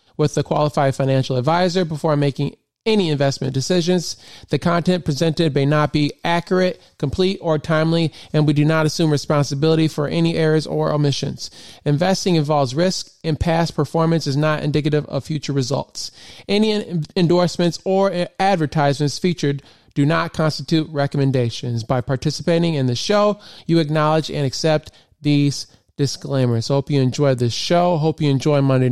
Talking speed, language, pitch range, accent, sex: 150 wpm, English, 135-165 Hz, American, male